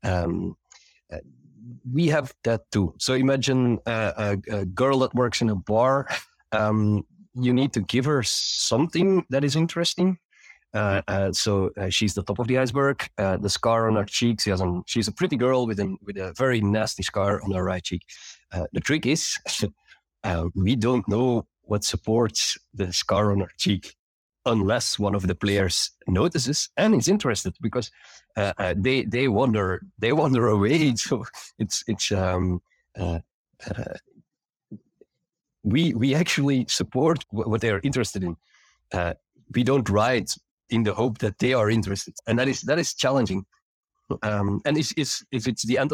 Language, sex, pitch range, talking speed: English, male, 100-130 Hz, 175 wpm